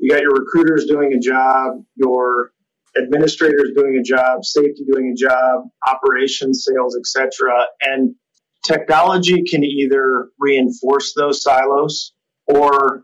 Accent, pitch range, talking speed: American, 130-150 Hz, 130 wpm